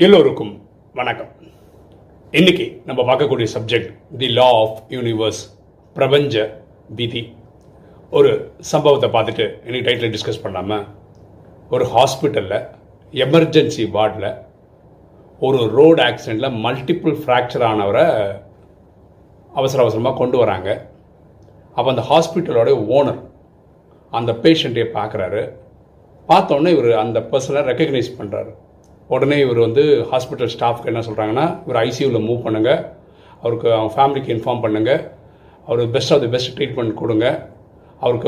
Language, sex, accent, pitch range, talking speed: Tamil, male, native, 110-155 Hz, 110 wpm